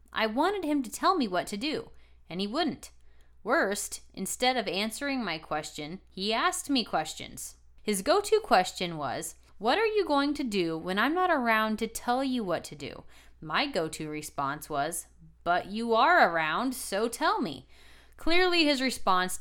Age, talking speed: 20-39, 175 wpm